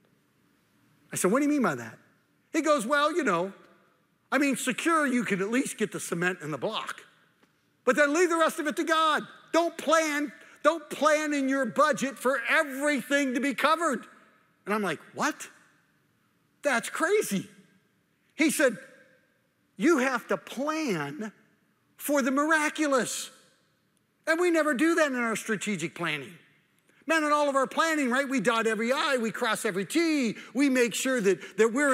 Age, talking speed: 50-69, 175 wpm